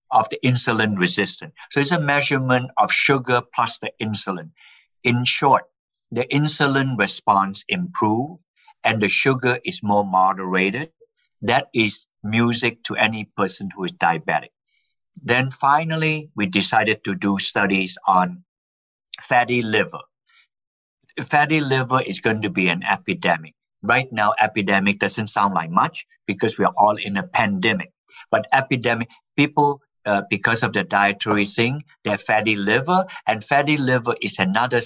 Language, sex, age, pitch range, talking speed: English, male, 50-69, 100-140 Hz, 145 wpm